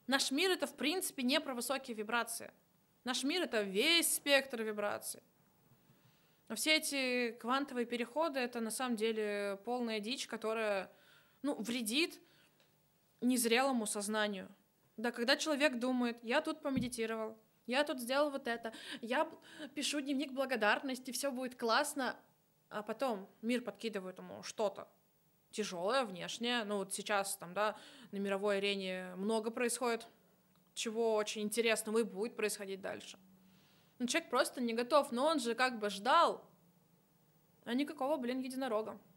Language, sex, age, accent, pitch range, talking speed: Russian, female, 20-39, native, 205-265 Hz, 140 wpm